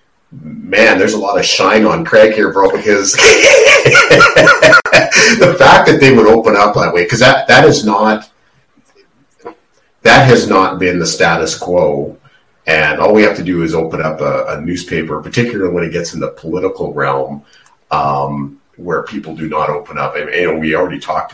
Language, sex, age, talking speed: English, male, 40-59, 185 wpm